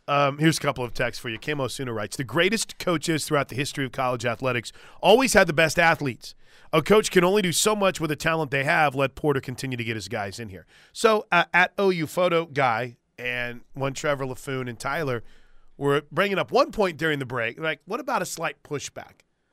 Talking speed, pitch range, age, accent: 220 wpm, 125-160 Hz, 30-49, American